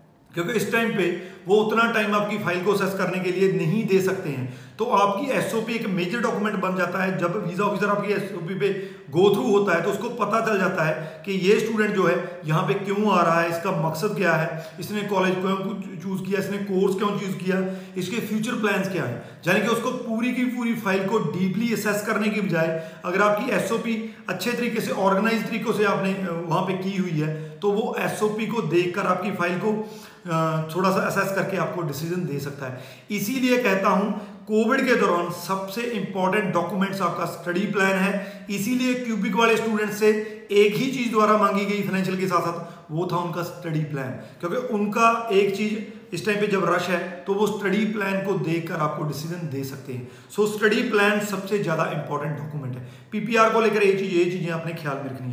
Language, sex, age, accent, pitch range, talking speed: Hindi, male, 40-59, native, 175-210 Hz, 205 wpm